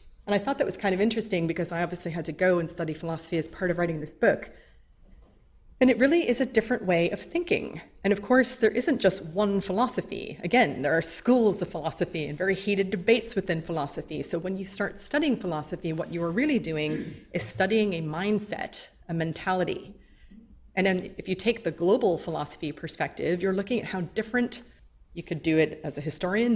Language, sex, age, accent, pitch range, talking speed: English, female, 30-49, American, 165-205 Hz, 205 wpm